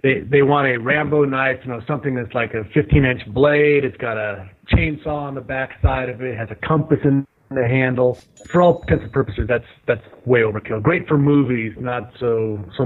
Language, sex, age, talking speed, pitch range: English, male, 30-49, 220 wpm, 115-135 Hz